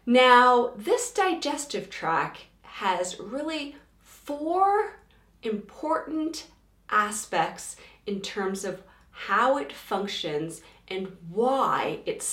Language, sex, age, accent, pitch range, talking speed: English, female, 30-49, American, 185-275 Hz, 90 wpm